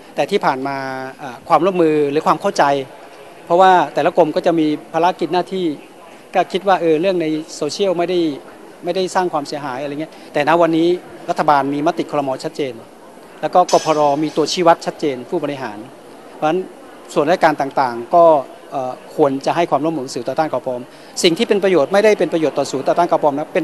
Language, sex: Thai, male